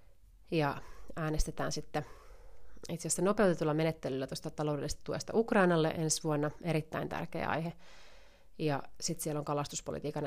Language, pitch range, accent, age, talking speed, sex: Finnish, 150-175 Hz, native, 30-49, 125 wpm, female